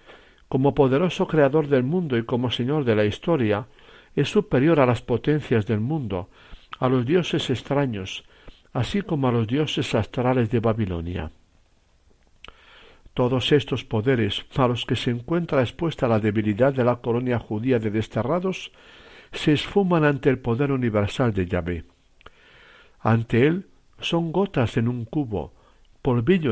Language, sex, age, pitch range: Spanish, male, 60-79, 110-150 Hz